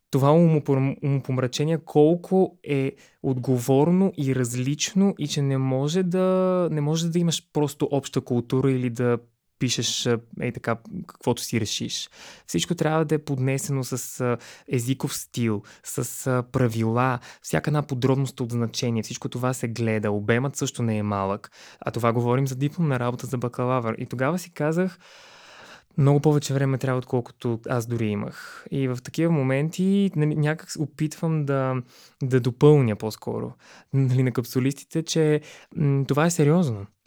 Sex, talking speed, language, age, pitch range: male, 145 wpm, Bulgarian, 20-39, 125-150 Hz